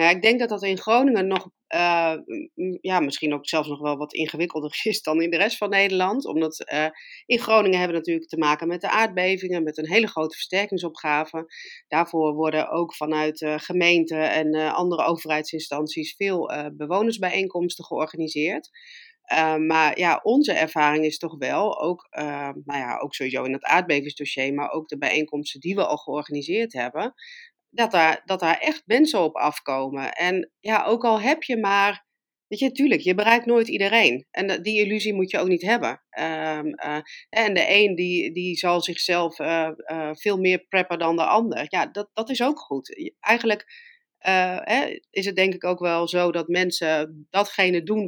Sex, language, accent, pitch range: female, Dutch, Dutch, 155-200 Hz